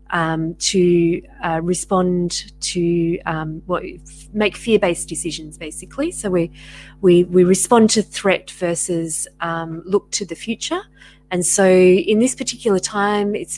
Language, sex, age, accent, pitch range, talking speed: English, female, 30-49, Australian, 170-210 Hz, 140 wpm